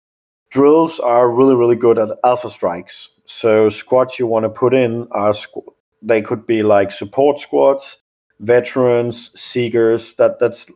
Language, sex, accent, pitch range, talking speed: English, male, Danish, 105-120 Hz, 150 wpm